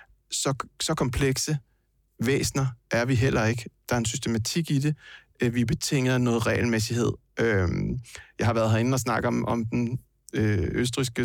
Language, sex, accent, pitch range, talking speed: Danish, male, native, 115-130 Hz, 150 wpm